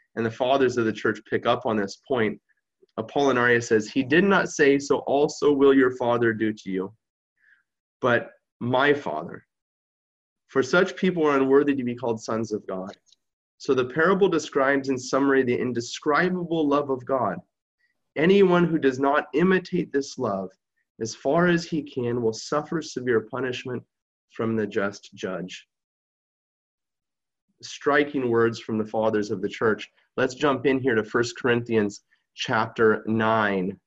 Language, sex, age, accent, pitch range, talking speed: English, male, 30-49, American, 110-145 Hz, 155 wpm